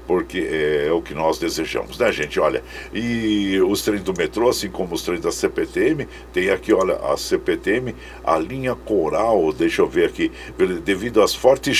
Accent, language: Brazilian, Portuguese